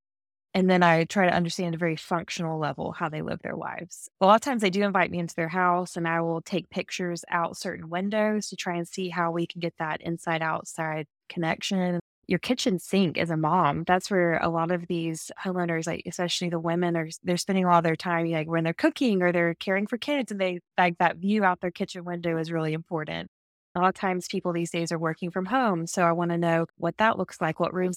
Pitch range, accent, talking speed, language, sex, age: 165-190 Hz, American, 240 wpm, English, female, 20-39